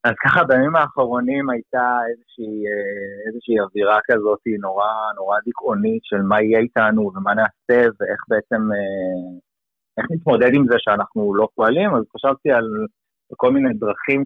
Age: 30-49